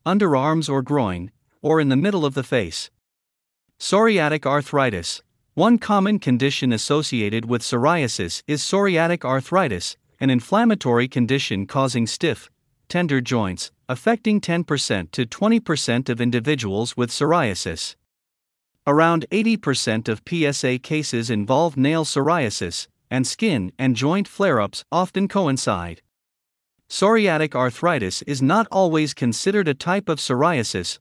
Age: 50-69